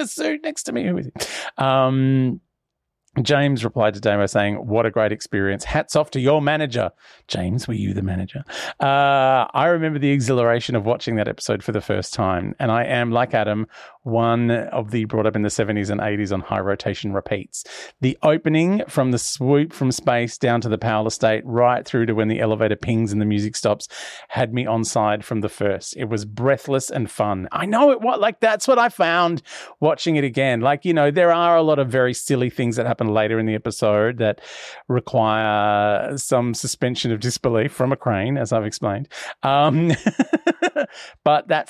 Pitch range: 110-140 Hz